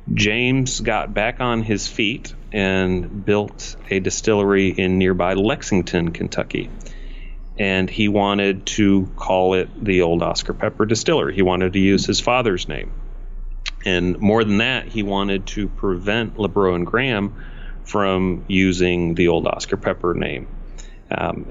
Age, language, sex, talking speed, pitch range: 30-49, English, male, 140 wpm, 95-110 Hz